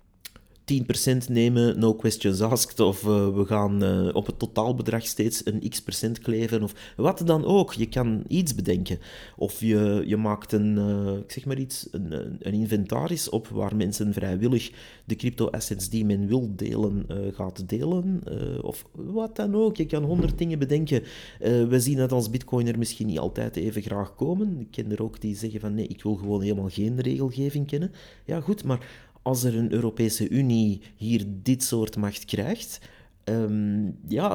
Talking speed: 185 wpm